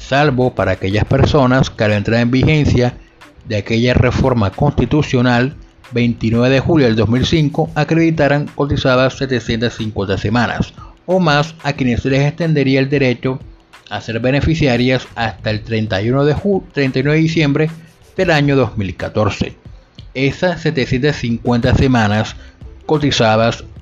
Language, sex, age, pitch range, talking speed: Spanish, male, 30-49, 110-140 Hz, 125 wpm